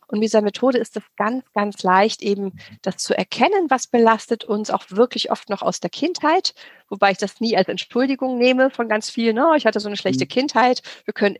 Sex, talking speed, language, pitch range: female, 220 wpm, German, 195-235 Hz